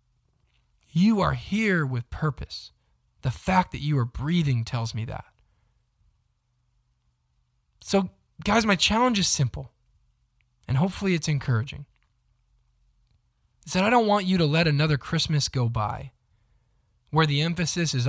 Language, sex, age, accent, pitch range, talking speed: English, male, 10-29, American, 115-160 Hz, 135 wpm